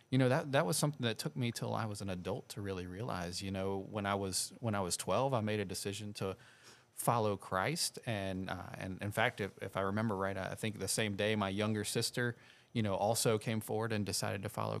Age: 30-49